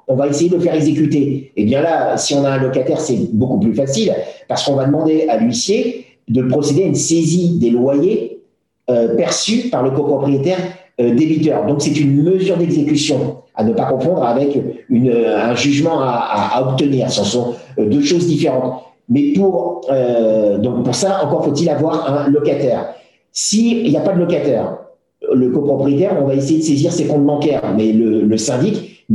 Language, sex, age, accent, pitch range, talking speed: French, male, 50-69, French, 125-155 Hz, 195 wpm